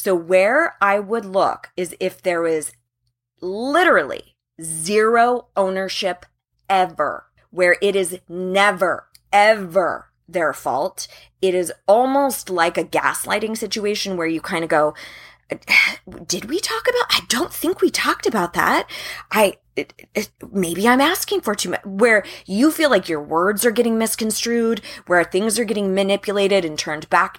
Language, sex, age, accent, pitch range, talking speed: English, female, 20-39, American, 160-205 Hz, 145 wpm